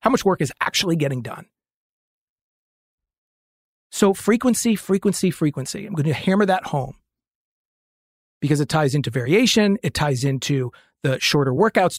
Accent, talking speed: American, 140 wpm